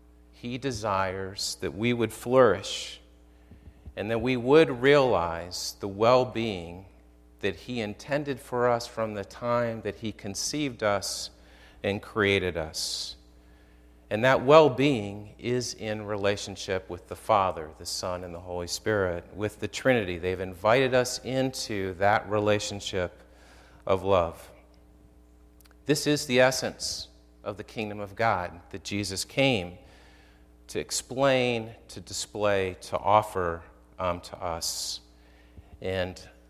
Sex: male